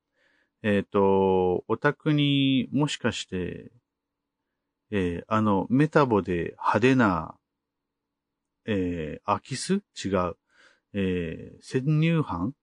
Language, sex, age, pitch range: Japanese, male, 50-69, 100-150 Hz